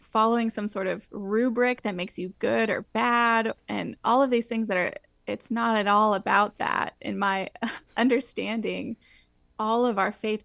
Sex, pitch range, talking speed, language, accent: female, 205-245 Hz, 180 wpm, English, American